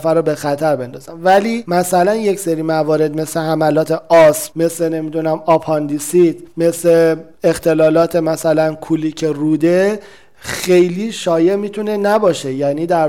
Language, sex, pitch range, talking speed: Persian, male, 155-180 Hz, 120 wpm